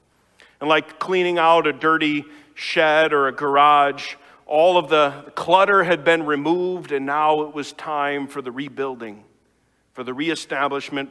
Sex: male